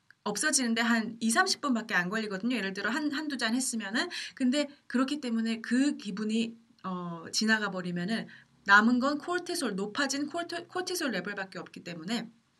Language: Korean